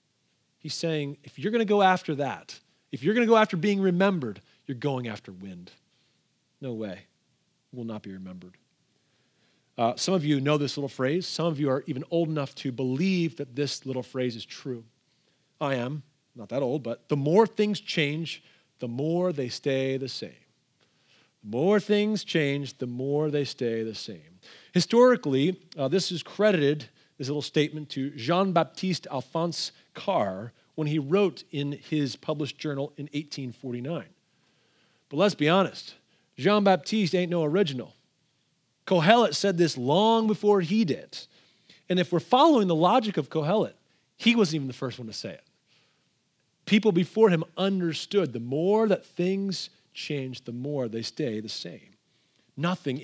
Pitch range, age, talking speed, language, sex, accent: 130-185 Hz, 40-59, 165 wpm, English, male, American